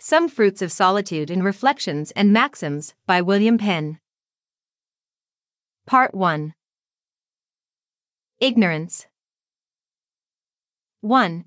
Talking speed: 80 wpm